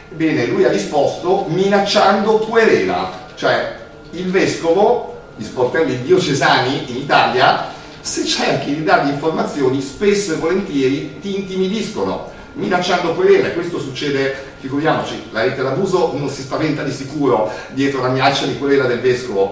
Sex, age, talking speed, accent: male, 50-69, 140 wpm, native